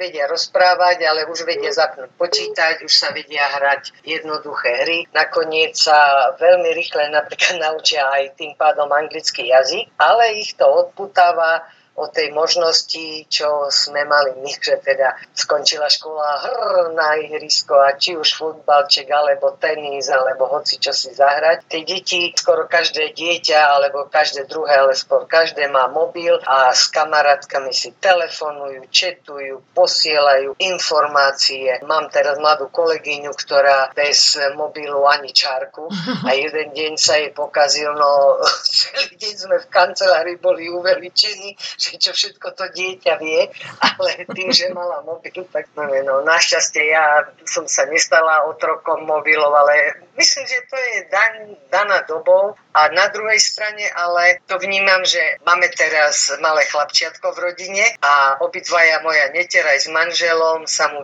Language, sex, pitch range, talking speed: Slovak, female, 145-180 Hz, 145 wpm